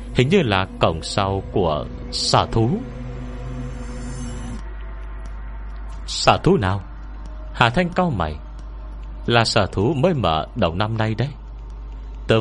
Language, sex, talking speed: Vietnamese, male, 120 wpm